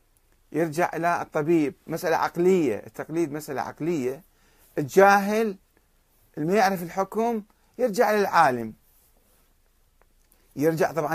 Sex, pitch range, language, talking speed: male, 120-185 Hz, Arabic, 85 wpm